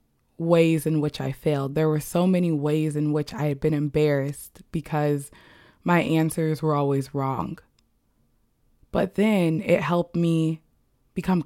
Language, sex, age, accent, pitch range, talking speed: English, female, 20-39, American, 145-170 Hz, 145 wpm